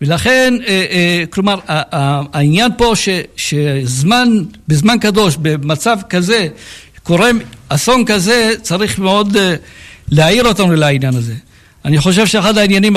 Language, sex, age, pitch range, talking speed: Hebrew, male, 60-79, 155-210 Hz, 95 wpm